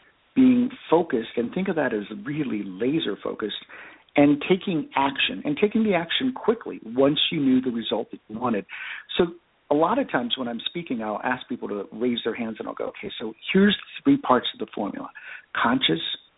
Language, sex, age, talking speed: English, male, 50-69, 195 wpm